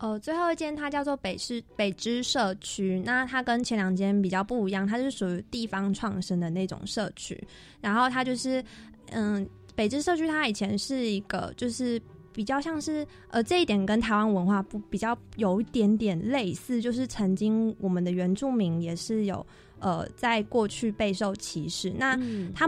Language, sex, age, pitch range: Chinese, female, 20-39, 190-235 Hz